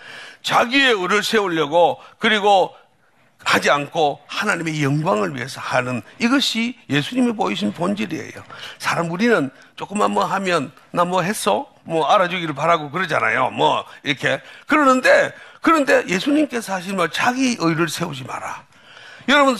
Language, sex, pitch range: Korean, male, 165-260 Hz